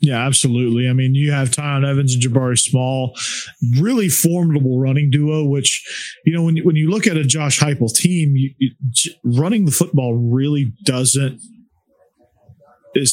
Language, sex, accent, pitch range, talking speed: English, male, American, 120-155 Hz, 165 wpm